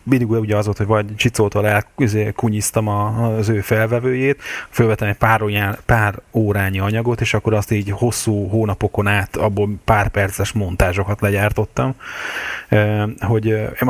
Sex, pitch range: male, 95-110 Hz